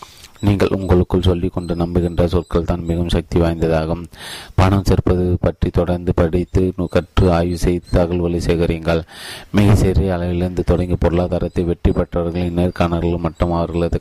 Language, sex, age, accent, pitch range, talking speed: Tamil, male, 30-49, native, 85-90 Hz, 130 wpm